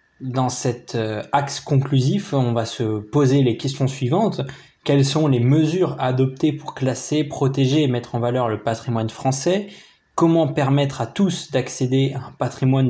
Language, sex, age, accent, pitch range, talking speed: French, male, 20-39, French, 120-140 Hz, 160 wpm